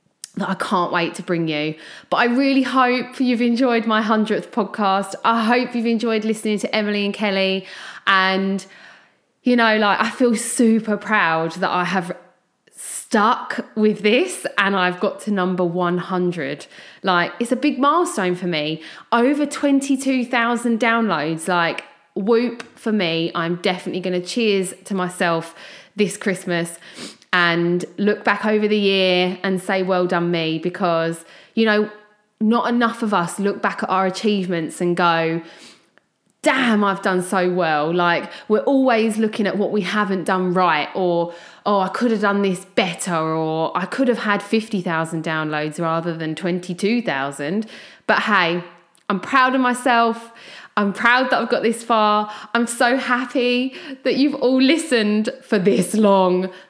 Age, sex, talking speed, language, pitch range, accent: 20-39, female, 155 wpm, English, 180-230 Hz, British